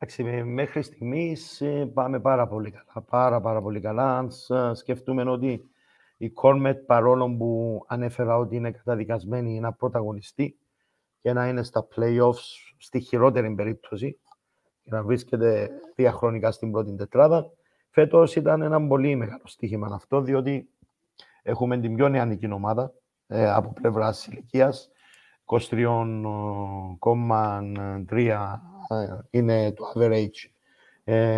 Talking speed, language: 110 wpm, Greek